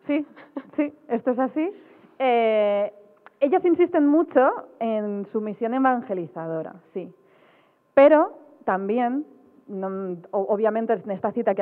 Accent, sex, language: Spanish, female, Spanish